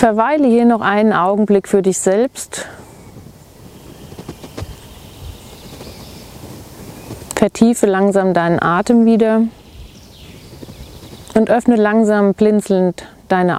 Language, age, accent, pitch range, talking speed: German, 30-49, German, 175-225 Hz, 80 wpm